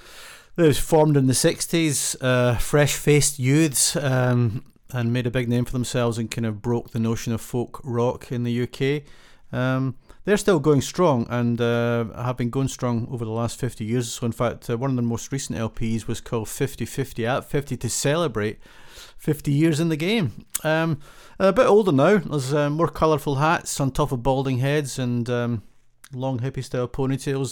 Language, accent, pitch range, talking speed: English, British, 115-145 Hz, 190 wpm